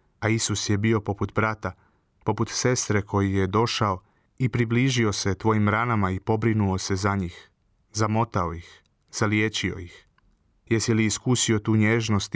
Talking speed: 145 wpm